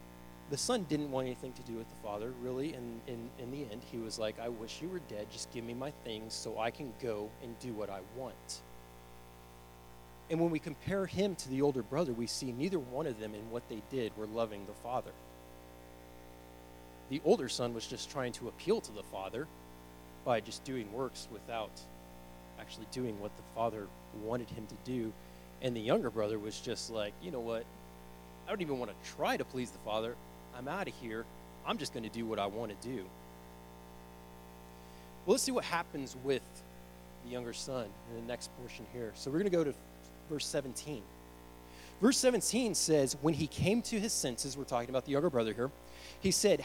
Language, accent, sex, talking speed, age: English, American, male, 205 wpm, 30-49